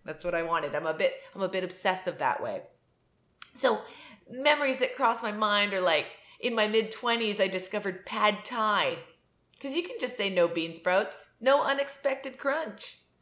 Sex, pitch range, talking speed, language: female, 180-265 Hz, 180 wpm, English